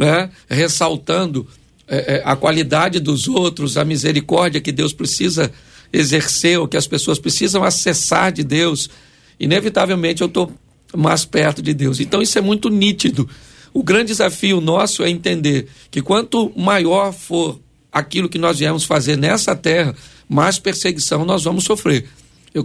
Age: 60-79